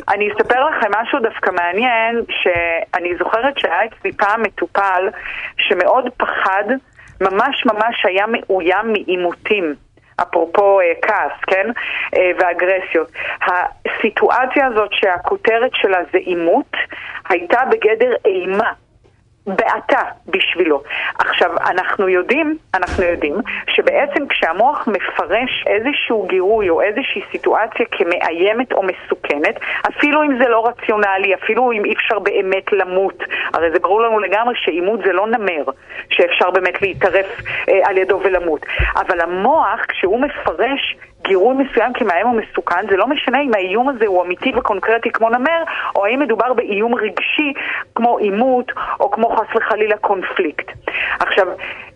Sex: female